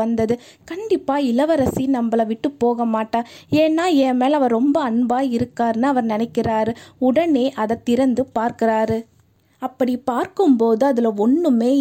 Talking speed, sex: 75 wpm, female